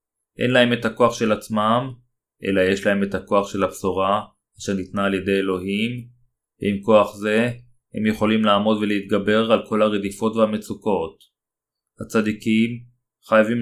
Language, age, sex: Hebrew, 30-49, male